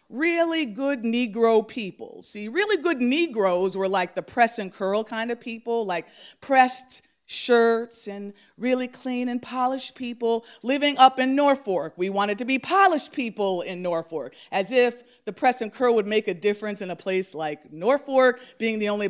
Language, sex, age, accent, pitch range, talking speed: English, female, 40-59, American, 200-270 Hz, 175 wpm